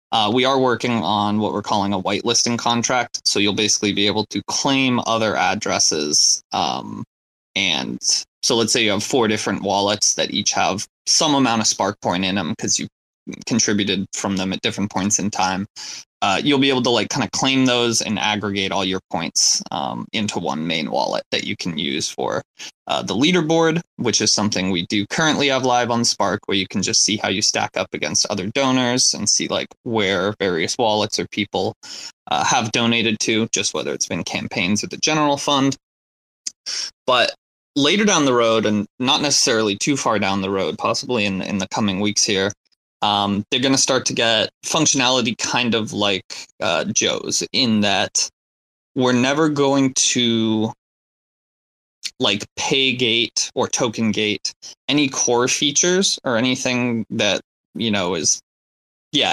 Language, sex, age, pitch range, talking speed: English, male, 20-39, 100-130 Hz, 175 wpm